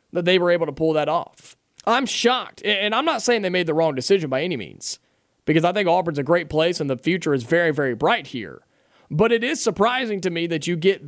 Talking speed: 250 wpm